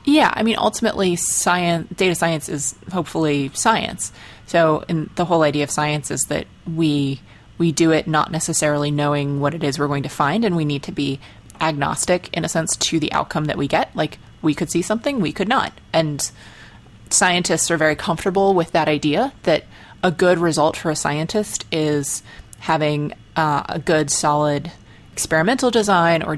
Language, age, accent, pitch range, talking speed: English, 20-39, American, 145-175 Hz, 180 wpm